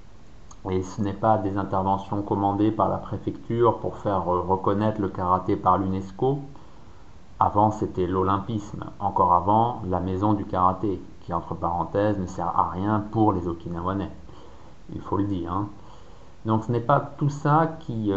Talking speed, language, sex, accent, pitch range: 155 wpm, French, male, French, 95-120 Hz